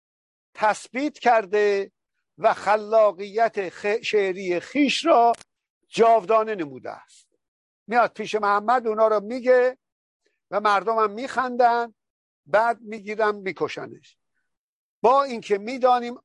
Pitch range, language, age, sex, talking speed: 190-235 Hz, Persian, 50-69, male, 95 wpm